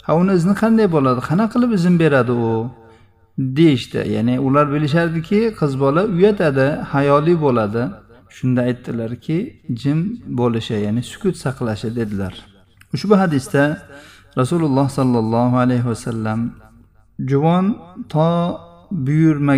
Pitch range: 115-165 Hz